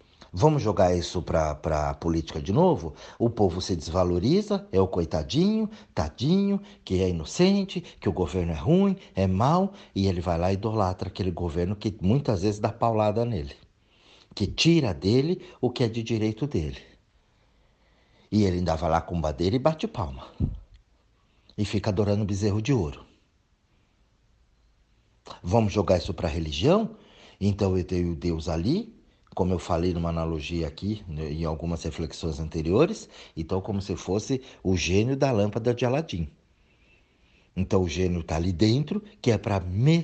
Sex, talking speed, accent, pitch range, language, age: male, 160 wpm, Brazilian, 85-120 Hz, Portuguese, 60-79